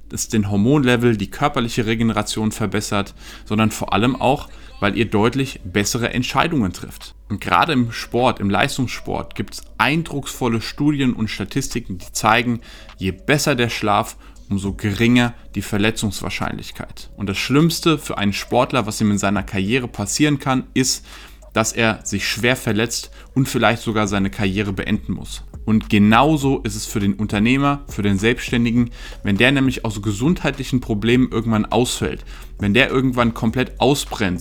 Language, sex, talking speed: German, male, 155 wpm